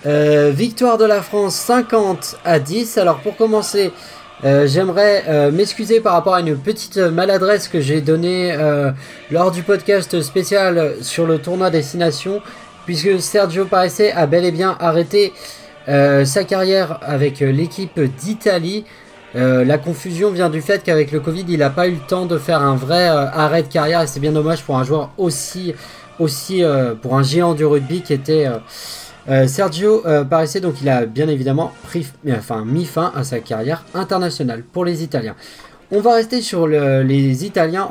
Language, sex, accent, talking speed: French, male, French, 180 wpm